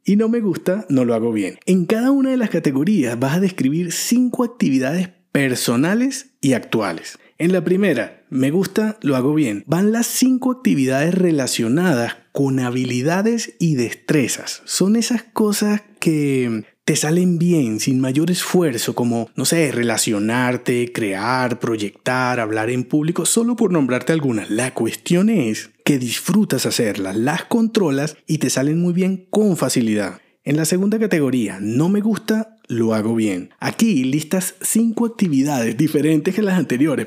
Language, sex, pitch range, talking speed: Spanish, male, 125-205 Hz, 155 wpm